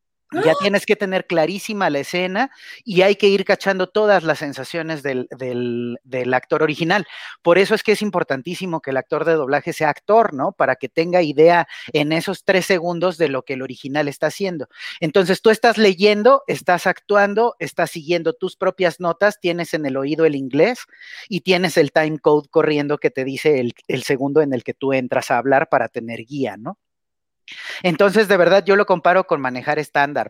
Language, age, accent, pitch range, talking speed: Spanish, 40-59, Mexican, 135-180 Hz, 195 wpm